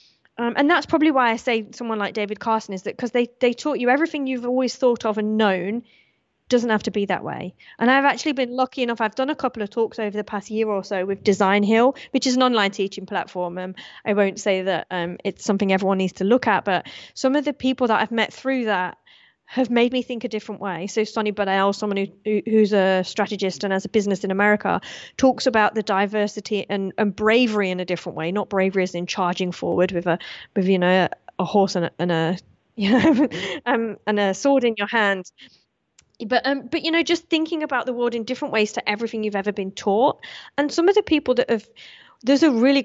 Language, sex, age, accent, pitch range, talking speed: English, female, 30-49, British, 200-250 Hz, 240 wpm